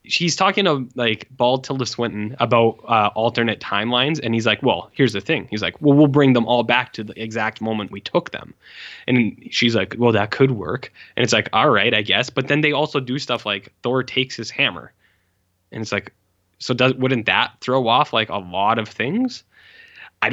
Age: 10-29